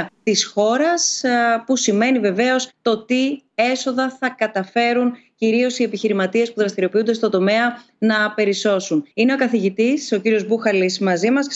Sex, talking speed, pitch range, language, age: female, 145 wpm, 210-255 Hz, Greek, 30-49